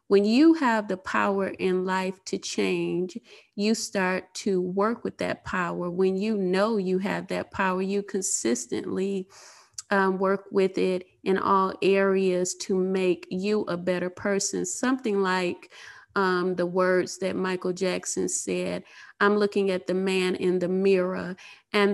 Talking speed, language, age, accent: 155 wpm, English, 30-49, American